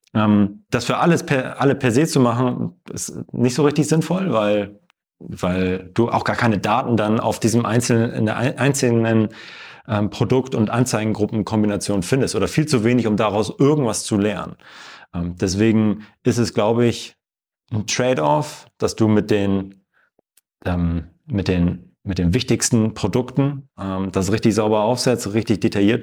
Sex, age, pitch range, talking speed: male, 30-49, 100-125 Hz, 145 wpm